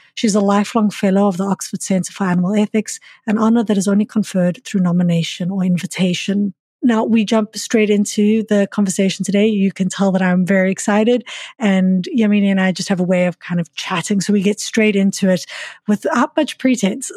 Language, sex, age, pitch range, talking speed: English, female, 30-49, 185-215 Hz, 200 wpm